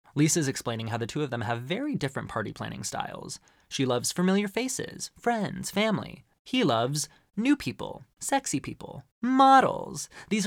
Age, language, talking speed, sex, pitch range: 20-39, English, 155 wpm, male, 120-170 Hz